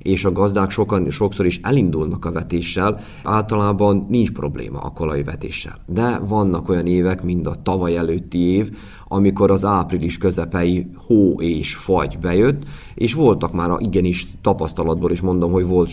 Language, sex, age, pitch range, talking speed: Hungarian, male, 30-49, 85-95 Hz, 160 wpm